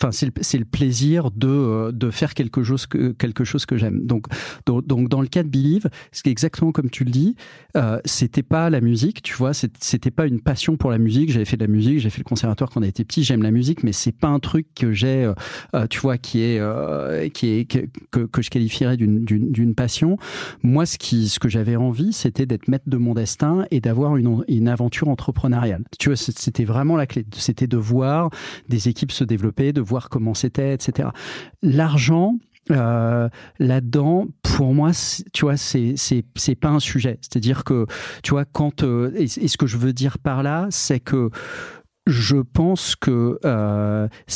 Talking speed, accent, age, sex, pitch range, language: 215 wpm, French, 40-59, male, 120-145 Hz, French